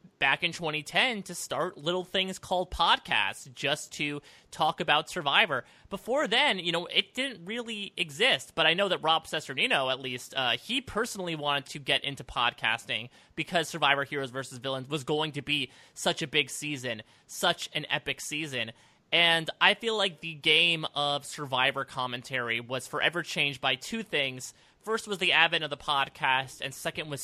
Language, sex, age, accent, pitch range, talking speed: English, male, 30-49, American, 135-180 Hz, 175 wpm